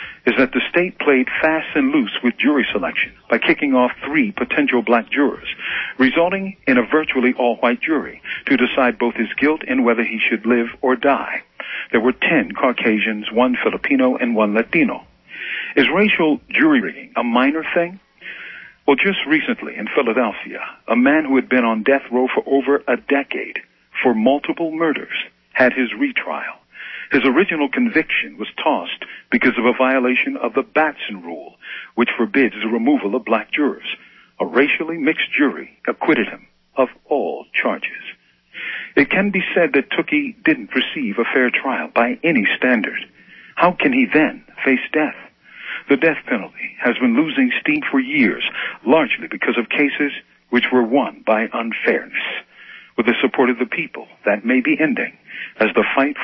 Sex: male